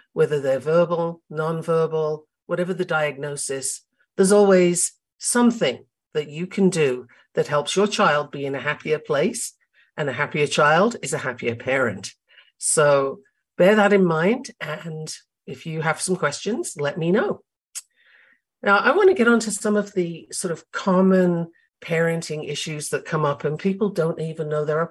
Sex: female